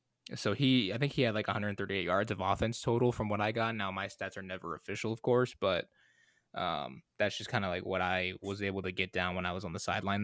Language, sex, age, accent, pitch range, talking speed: English, male, 20-39, American, 100-125 Hz, 260 wpm